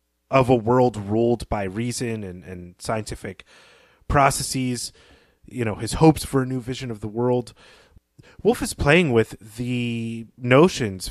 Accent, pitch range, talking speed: American, 100-130 Hz, 145 wpm